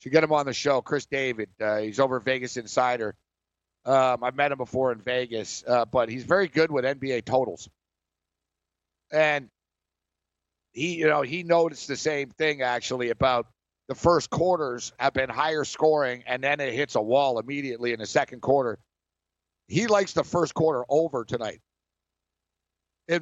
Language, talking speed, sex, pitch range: English, 170 wpm, male, 115-160 Hz